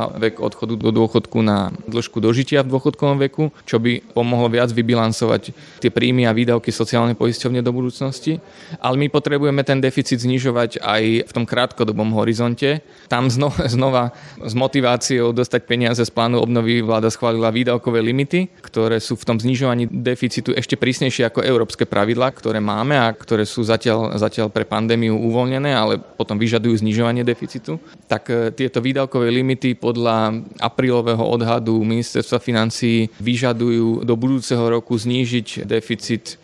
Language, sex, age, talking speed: Slovak, male, 20-39, 145 wpm